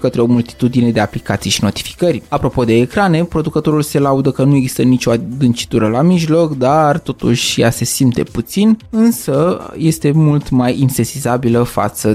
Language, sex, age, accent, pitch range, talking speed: Romanian, male, 20-39, native, 120-150 Hz, 160 wpm